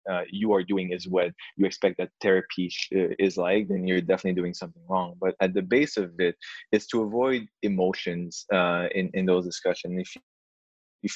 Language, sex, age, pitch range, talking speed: English, male, 20-39, 90-100 Hz, 190 wpm